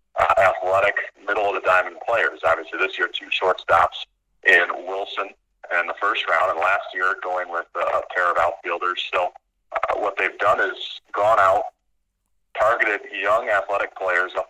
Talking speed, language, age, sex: 165 wpm, English, 40-59, male